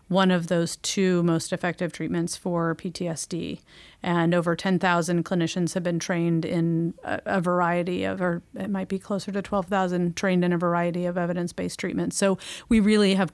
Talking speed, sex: 170 wpm, female